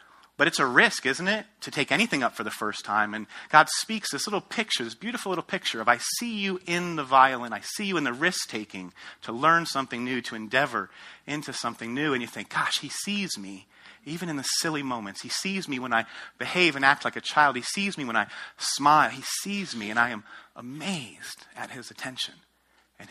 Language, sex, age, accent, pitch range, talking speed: English, male, 30-49, American, 115-165 Hz, 225 wpm